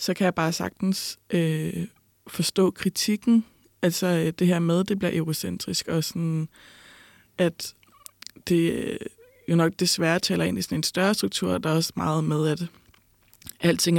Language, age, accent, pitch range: Danish, 20-39, native, 155-185 Hz